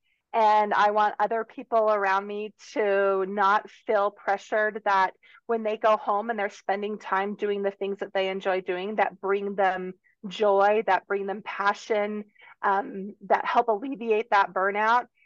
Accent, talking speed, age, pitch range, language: American, 160 wpm, 30-49, 190-215 Hz, English